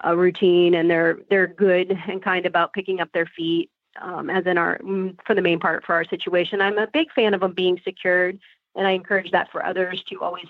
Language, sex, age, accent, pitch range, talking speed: English, female, 30-49, American, 170-195 Hz, 230 wpm